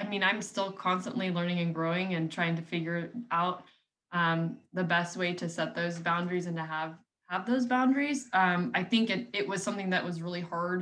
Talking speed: 210 wpm